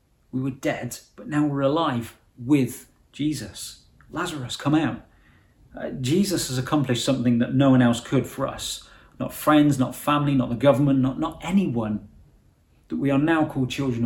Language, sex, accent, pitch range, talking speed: English, male, British, 115-145 Hz, 170 wpm